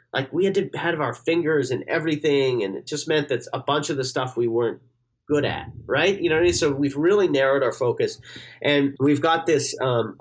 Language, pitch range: English, 120-160 Hz